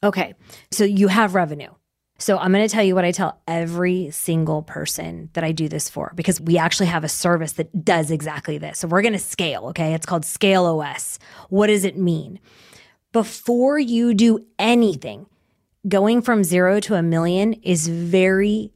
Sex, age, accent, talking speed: female, 20-39, American, 185 wpm